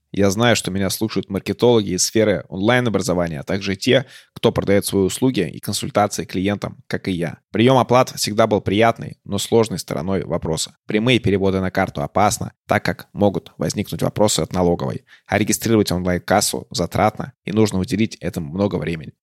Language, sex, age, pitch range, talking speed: Russian, male, 20-39, 95-110 Hz, 165 wpm